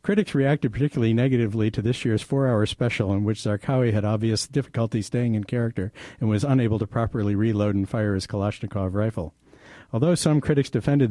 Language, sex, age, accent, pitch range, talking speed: English, male, 60-79, American, 105-130 Hz, 180 wpm